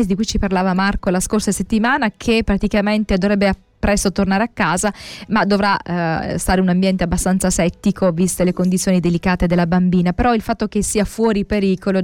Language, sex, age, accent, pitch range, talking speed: Italian, female, 20-39, native, 180-225 Hz, 190 wpm